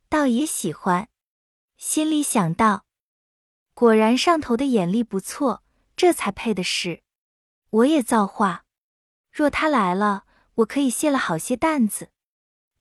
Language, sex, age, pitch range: Chinese, female, 20-39, 205-295 Hz